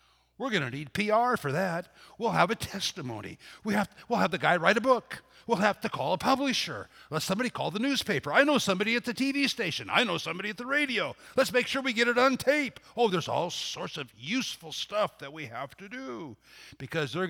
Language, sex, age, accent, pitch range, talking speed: English, male, 60-79, American, 145-235 Hz, 230 wpm